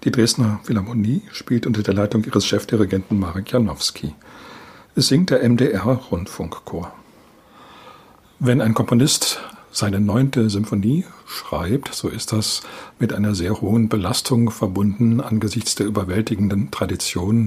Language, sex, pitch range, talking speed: German, male, 105-125 Hz, 120 wpm